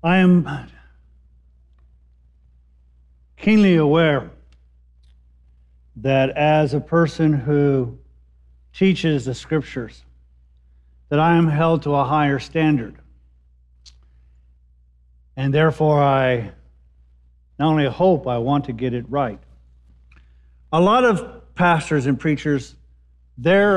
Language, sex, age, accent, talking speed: English, male, 50-69, American, 100 wpm